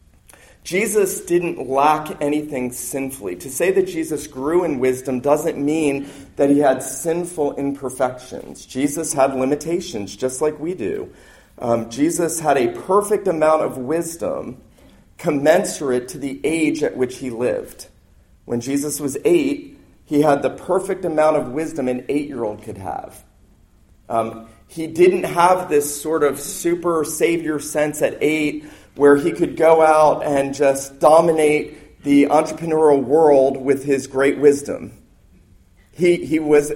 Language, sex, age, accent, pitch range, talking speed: English, male, 40-59, American, 125-155 Hz, 140 wpm